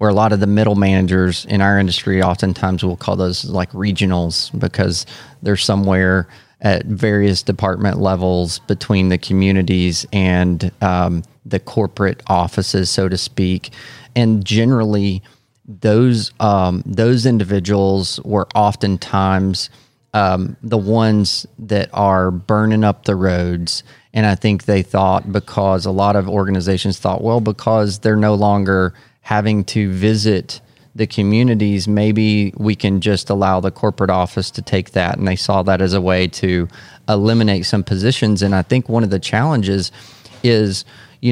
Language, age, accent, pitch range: English, 30-49, American, 95-110 Hz